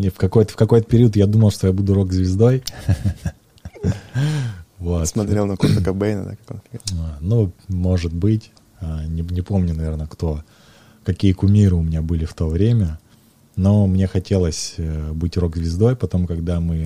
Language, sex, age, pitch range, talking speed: Russian, male, 20-39, 85-105 Hz, 125 wpm